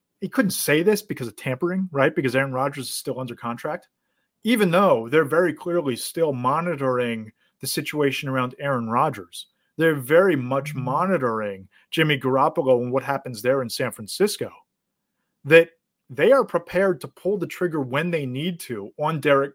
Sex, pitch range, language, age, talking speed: male, 135-190 Hz, English, 30-49, 165 wpm